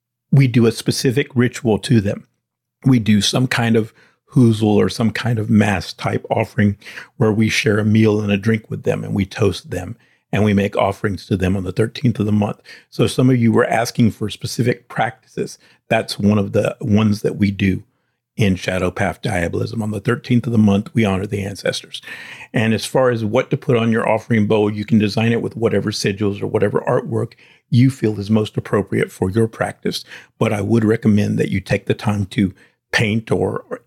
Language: English